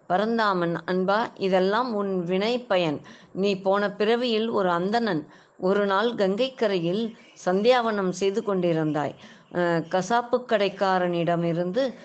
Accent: native